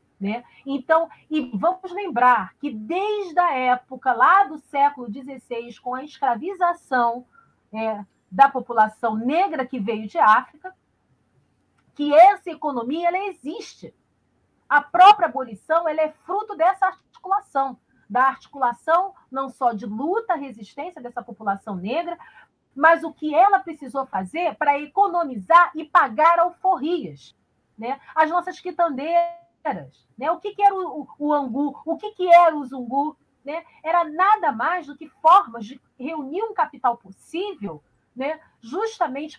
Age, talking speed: 40-59, 135 wpm